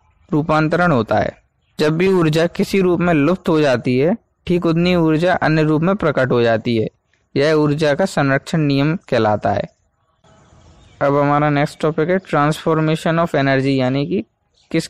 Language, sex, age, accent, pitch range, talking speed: Hindi, male, 20-39, native, 130-165 Hz, 165 wpm